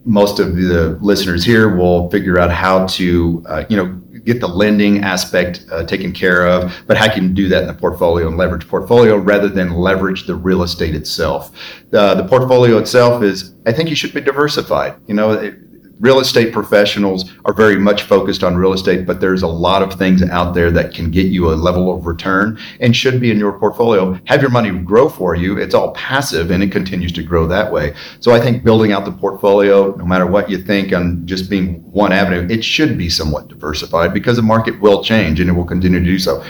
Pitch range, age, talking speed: 90-105 Hz, 40-59, 225 wpm